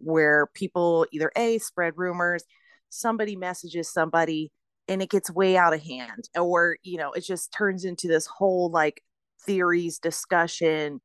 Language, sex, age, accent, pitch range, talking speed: English, female, 30-49, American, 170-220 Hz, 150 wpm